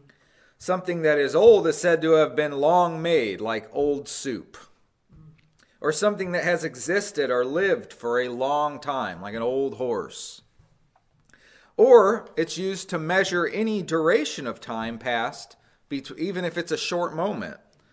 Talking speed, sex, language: 150 wpm, male, English